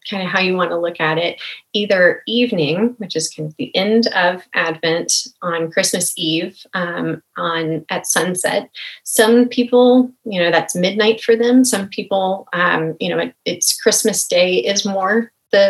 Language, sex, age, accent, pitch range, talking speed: English, female, 30-49, American, 175-220 Hz, 170 wpm